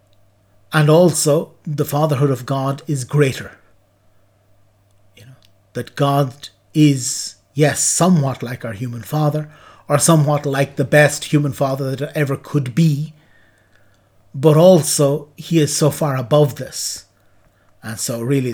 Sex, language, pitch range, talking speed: male, English, 120-145 Hz, 135 wpm